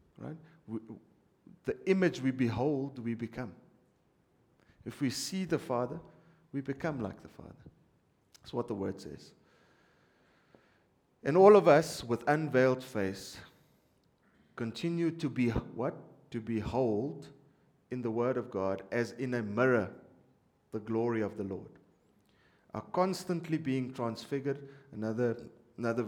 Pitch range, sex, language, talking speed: 105-140 Hz, male, English, 130 wpm